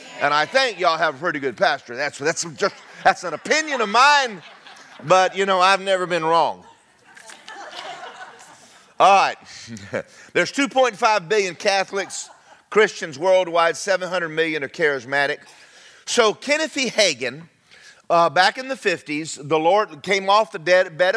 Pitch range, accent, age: 165-225 Hz, American, 40-59